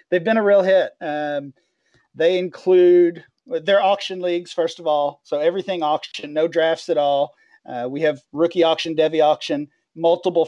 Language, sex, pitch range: English, male, 150-180 Hz